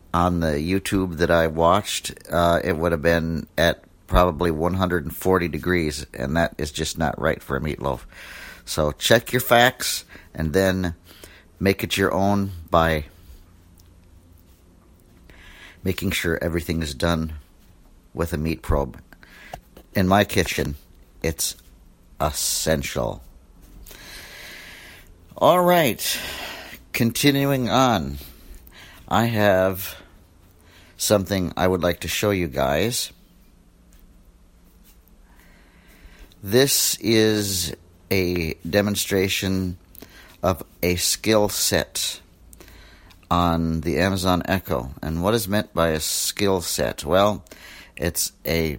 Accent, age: American, 60-79